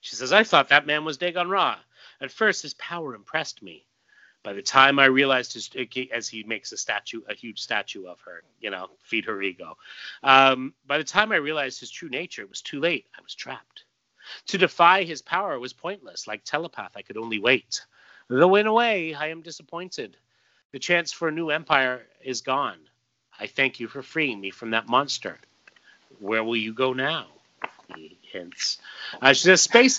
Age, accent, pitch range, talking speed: 40-59, American, 125-155 Hz, 190 wpm